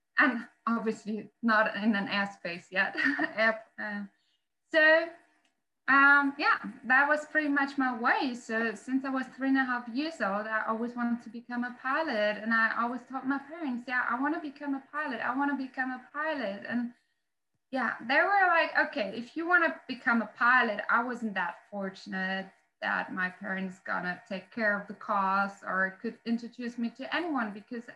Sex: female